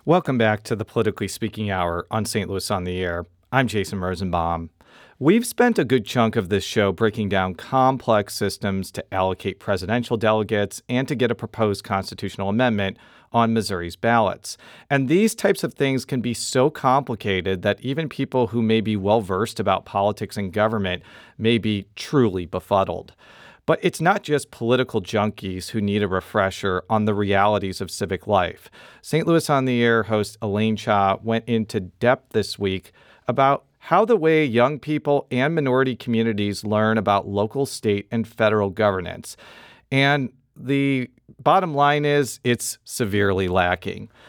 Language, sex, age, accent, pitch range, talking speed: English, male, 40-59, American, 100-125 Hz, 160 wpm